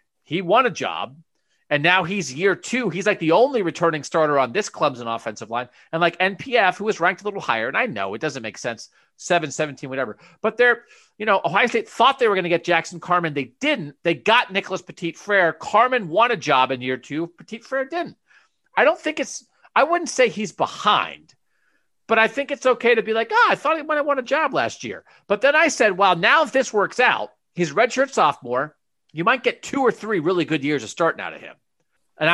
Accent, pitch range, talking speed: American, 155-220 Hz, 230 wpm